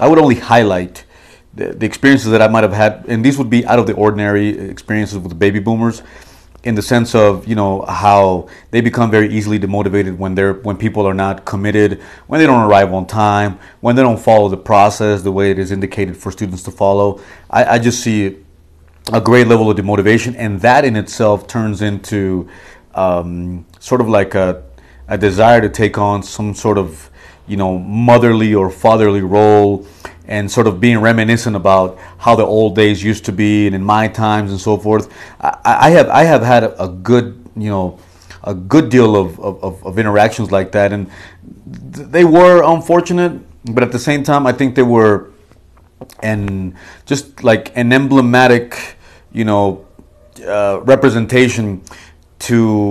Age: 30-49